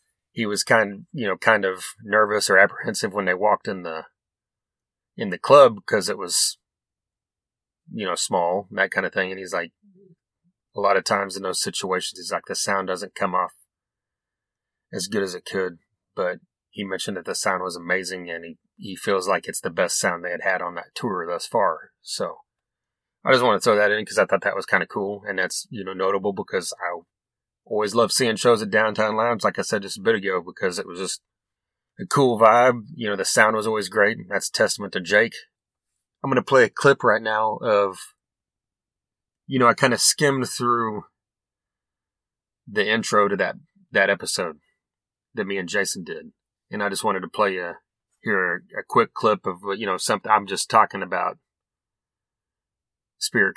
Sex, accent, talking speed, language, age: male, American, 200 wpm, English, 30-49